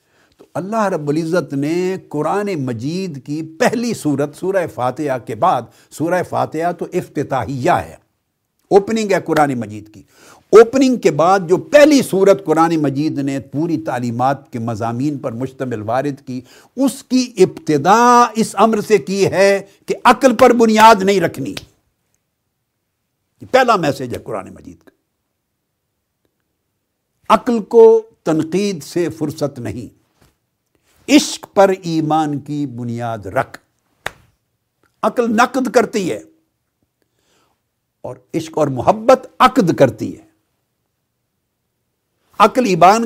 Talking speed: 120 wpm